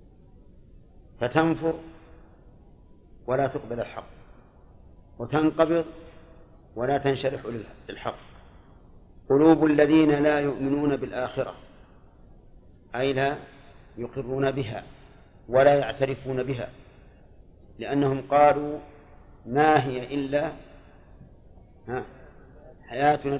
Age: 40-59